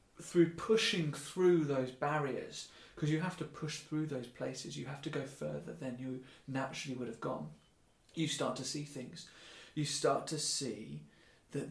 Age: 30-49